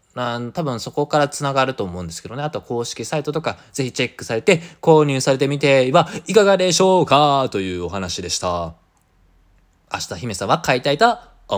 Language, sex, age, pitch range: Japanese, male, 20-39, 125-195 Hz